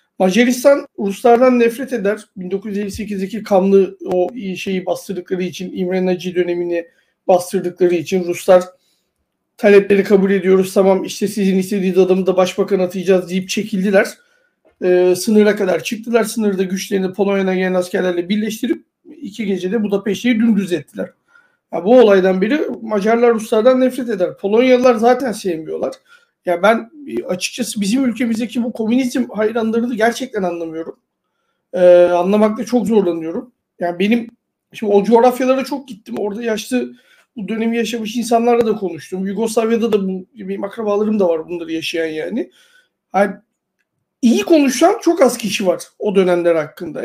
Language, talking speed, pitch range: Turkish, 130 wpm, 185-245 Hz